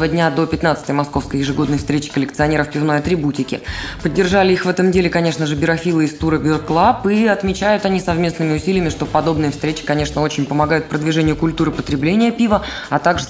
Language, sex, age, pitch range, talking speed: Russian, female, 20-39, 145-185 Hz, 165 wpm